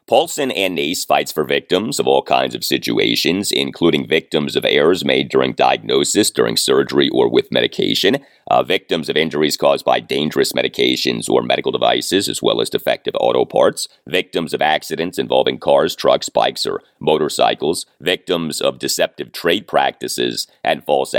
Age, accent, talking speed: 30-49, American, 160 wpm